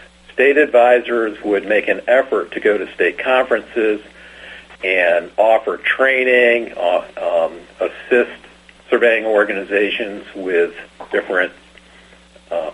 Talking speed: 105 wpm